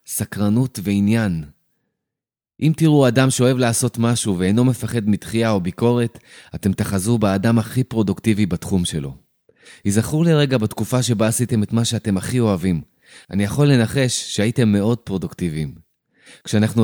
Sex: male